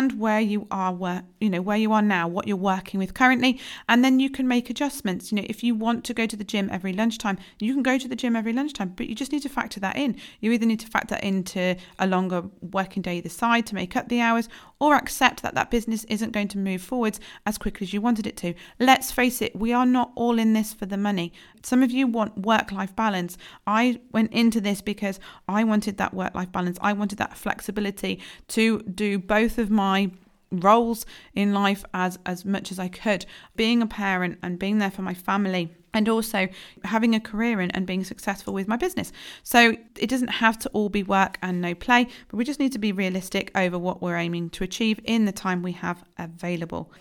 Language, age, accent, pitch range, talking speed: English, 40-59, British, 190-230 Hz, 235 wpm